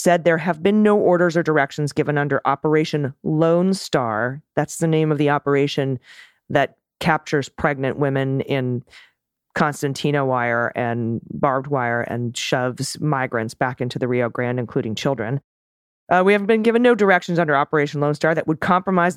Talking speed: 165 wpm